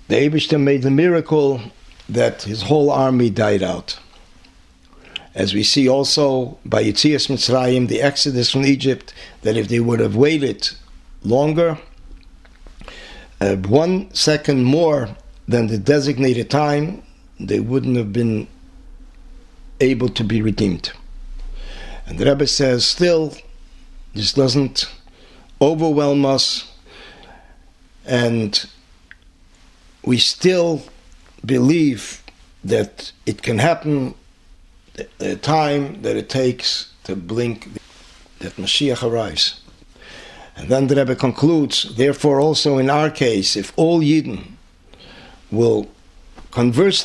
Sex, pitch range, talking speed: male, 110-145 Hz, 110 wpm